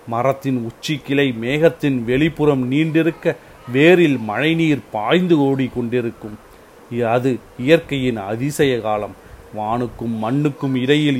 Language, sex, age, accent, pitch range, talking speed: Tamil, male, 40-59, native, 120-145 Hz, 95 wpm